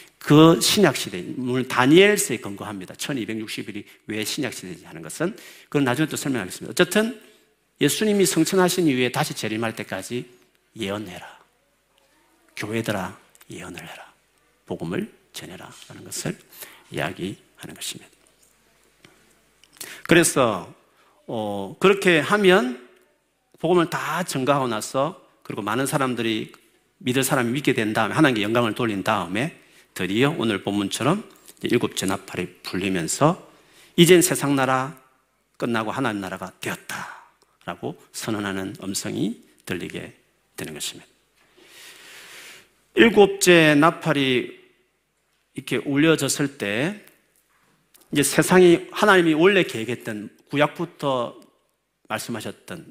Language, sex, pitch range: Korean, male, 115-170 Hz